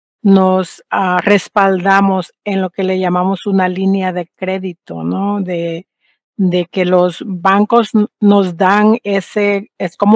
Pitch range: 180-210 Hz